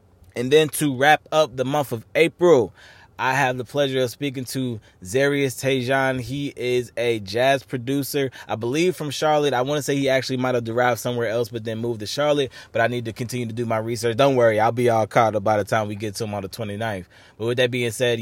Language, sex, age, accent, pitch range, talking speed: English, male, 20-39, American, 105-130 Hz, 245 wpm